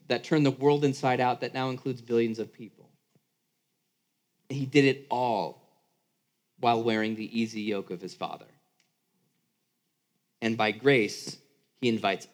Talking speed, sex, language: 140 wpm, male, English